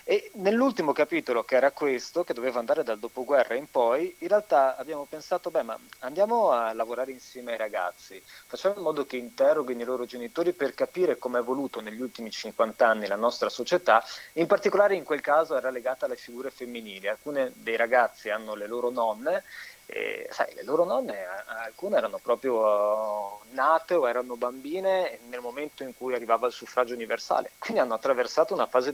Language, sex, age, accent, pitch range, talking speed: Italian, male, 30-49, native, 120-175 Hz, 185 wpm